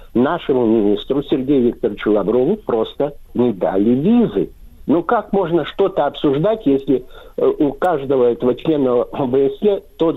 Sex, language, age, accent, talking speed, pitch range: male, Russian, 60-79, native, 125 wpm, 145-205 Hz